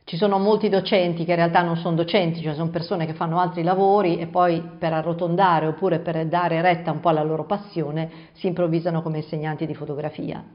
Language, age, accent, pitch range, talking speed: Italian, 50-69, native, 160-200 Hz, 205 wpm